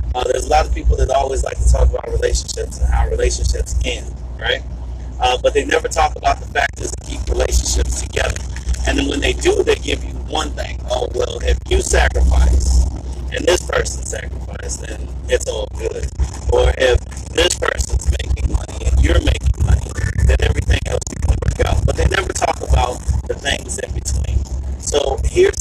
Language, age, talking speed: English, 30-49, 190 wpm